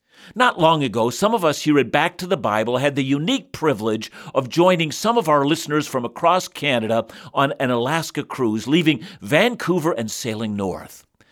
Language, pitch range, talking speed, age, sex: English, 125-180 Hz, 180 wpm, 50-69, male